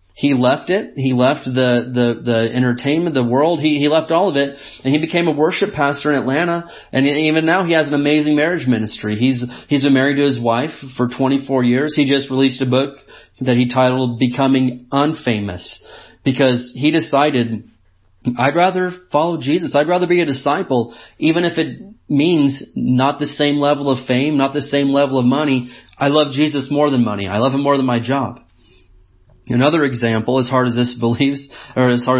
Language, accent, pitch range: English, American, 120-145 Hz